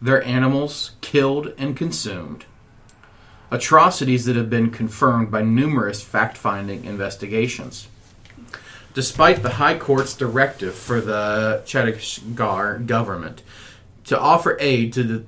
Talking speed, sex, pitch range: 110 wpm, male, 110-135 Hz